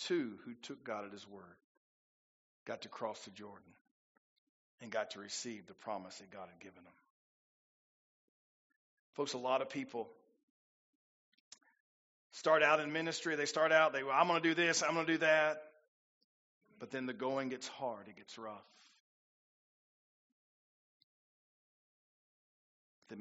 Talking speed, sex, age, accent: 150 wpm, male, 40-59, American